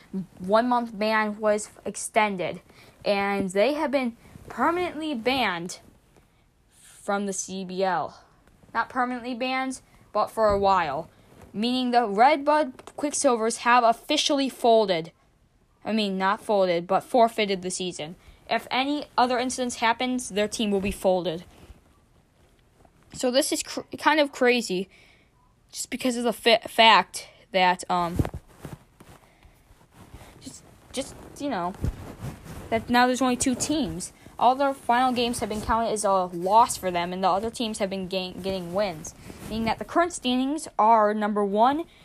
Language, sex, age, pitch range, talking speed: English, female, 10-29, 190-250 Hz, 140 wpm